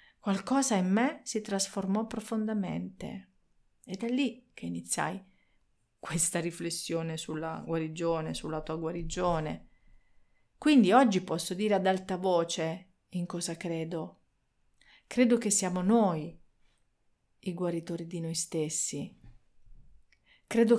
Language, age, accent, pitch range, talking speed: Italian, 40-59, native, 170-210 Hz, 110 wpm